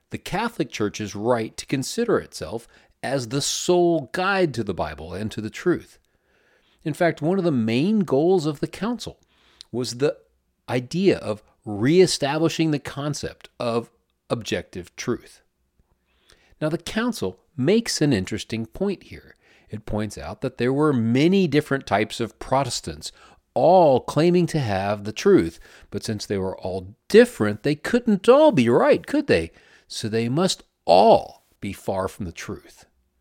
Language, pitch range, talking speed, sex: English, 105-175 Hz, 155 wpm, male